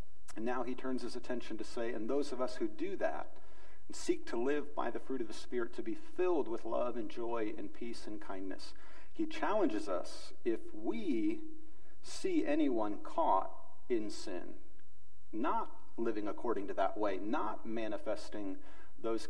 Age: 50-69